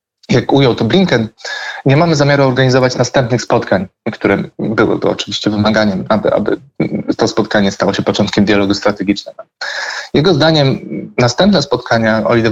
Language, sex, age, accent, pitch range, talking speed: Polish, male, 20-39, native, 115-140 Hz, 140 wpm